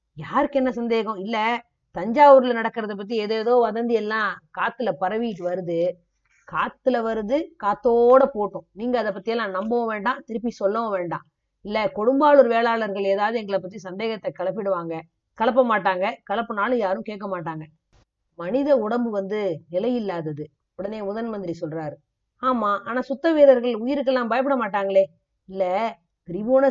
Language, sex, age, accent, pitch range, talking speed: Tamil, female, 30-49, native, 185-245 Hz, 120 wpm